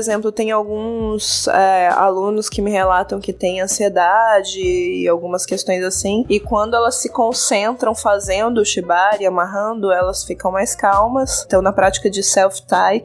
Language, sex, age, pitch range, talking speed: Portuguese, female, 20-39, 180-215 Hz, 150 wpm